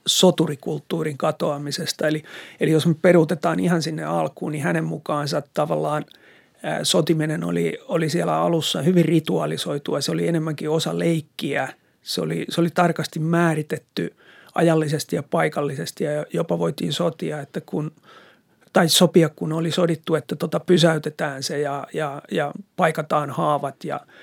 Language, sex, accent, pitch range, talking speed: Finnish, male, native, 150-175 Hz, 145 wpm